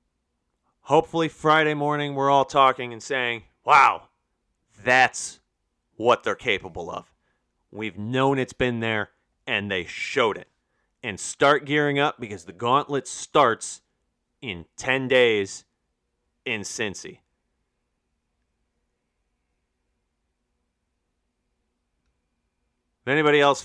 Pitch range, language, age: 110-155 Hz, English, 30-49